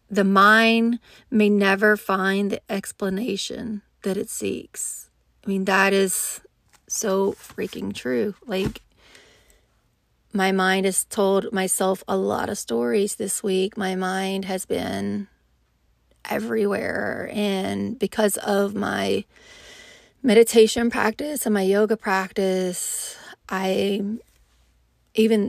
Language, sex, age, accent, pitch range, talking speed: English, female, 30-49, American, 190-220 Hz, 110 wpm